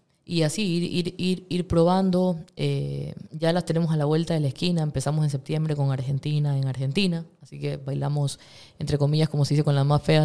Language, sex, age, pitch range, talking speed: Spanish, female, 20-39, 140-165 Hz, 210 wpm